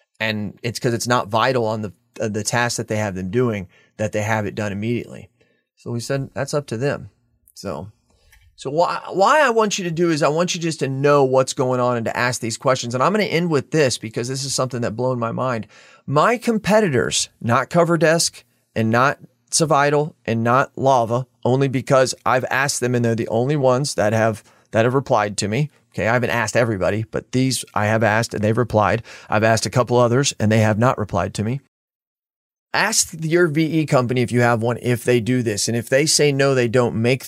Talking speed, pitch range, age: 225 wpm, 115-140 Hz, 30-49